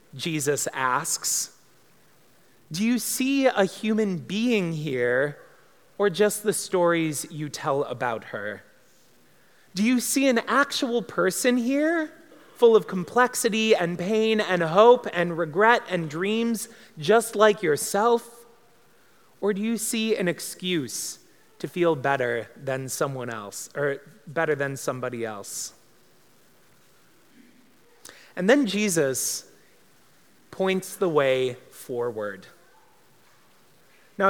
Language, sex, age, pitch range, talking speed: English, male, 30-49, 150-220 Hz, 110 wpm